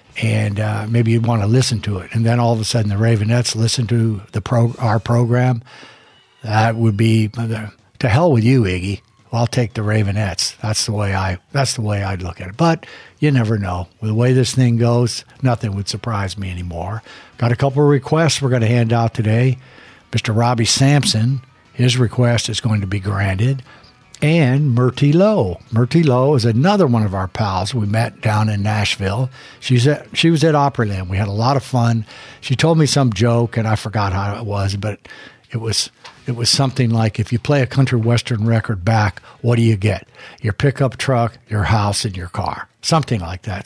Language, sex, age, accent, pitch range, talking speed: English, male, 60-79, American, 105-130 Hz, 210 wpm